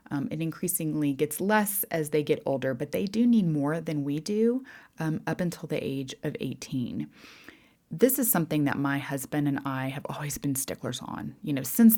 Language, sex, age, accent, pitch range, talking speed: English, female, 20-39, American, 140-175 Hz, 200 wpm